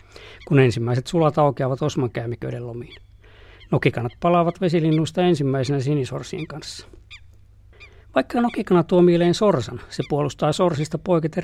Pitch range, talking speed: 115-165 Hz, 115 wpm